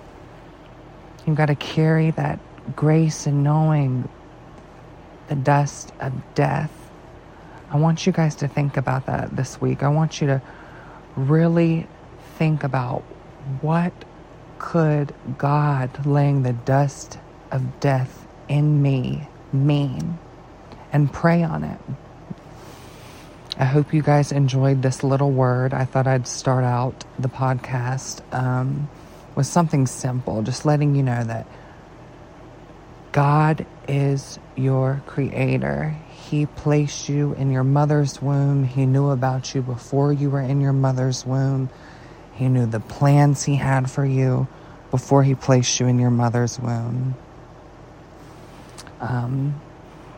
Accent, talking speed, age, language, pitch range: American, 125 wpm, 30-49, English, 130-150 Hz